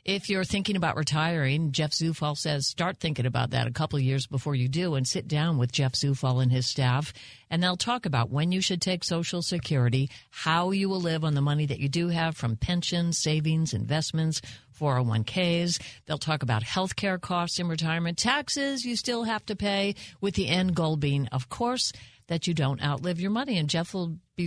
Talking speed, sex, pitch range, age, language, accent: 210 wpm, female, 135-180 Hz, 60-79, English, American